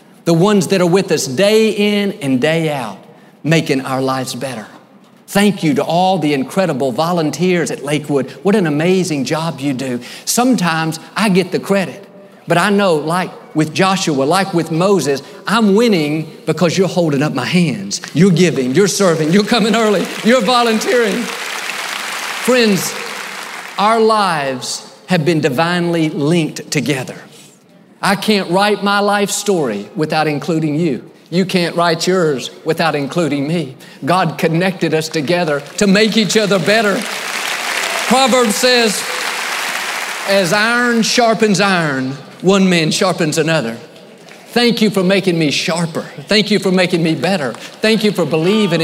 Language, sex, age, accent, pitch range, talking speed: English, male, 50-69, American, 160-210 Hz, 145 wpm